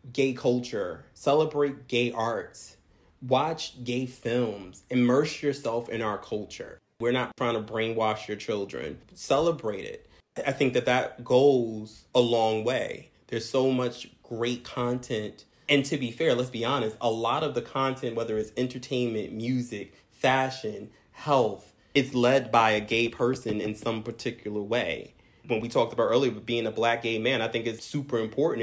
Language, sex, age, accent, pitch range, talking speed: English, male, 30-49, American, 110-130 Hz, 165 wpm